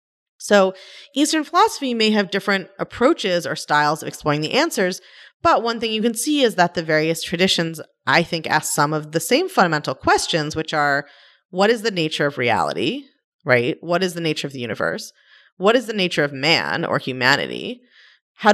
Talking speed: 190 wpm